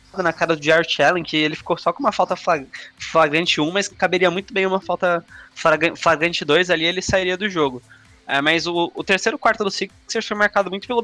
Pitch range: 155-200 Hz